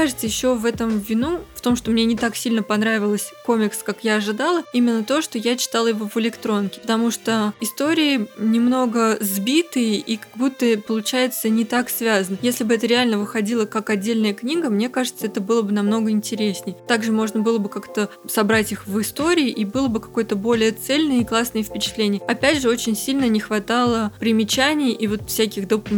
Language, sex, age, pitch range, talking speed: Russian, female, 20-39, 210-250 Hz, 190 wpm